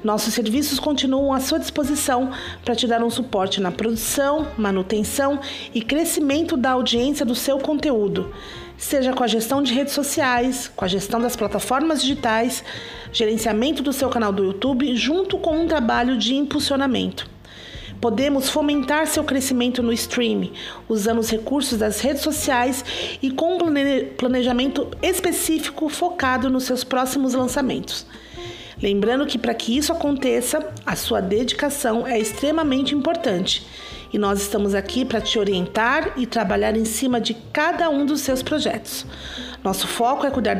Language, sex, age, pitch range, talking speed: Portuguese, female, 40-59, 225-290 Hz, 150 wpm